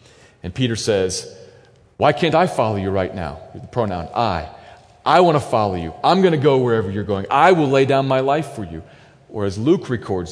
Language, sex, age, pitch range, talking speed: English, male, 40-59, 95-145 Hz, 215 wpm